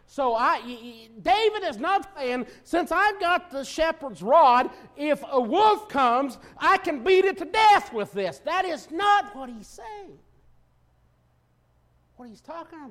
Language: English